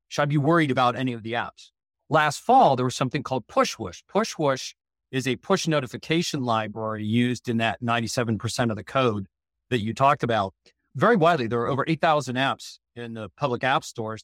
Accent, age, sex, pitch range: American, 50-69, male, 115-135 Hz